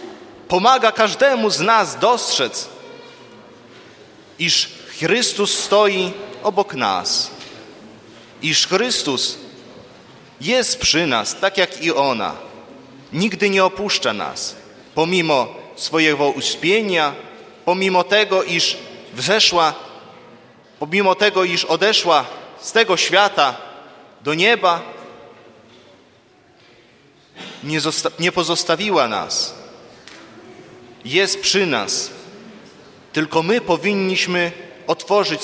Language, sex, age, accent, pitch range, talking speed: Polish, male, 30-49, native, 165-215 Hz, 85 wpm